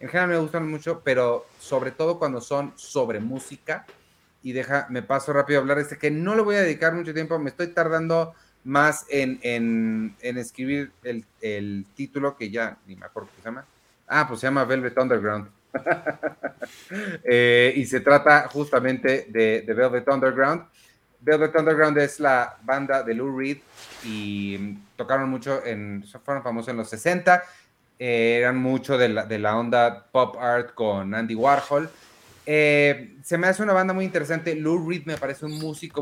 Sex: male